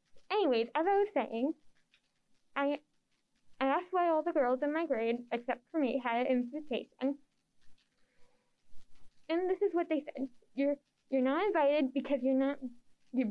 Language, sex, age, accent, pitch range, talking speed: English, female, 10-29, American, 255-320 Hz, 160 wpm